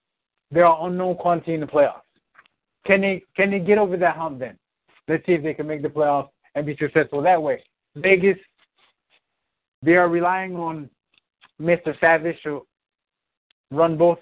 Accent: American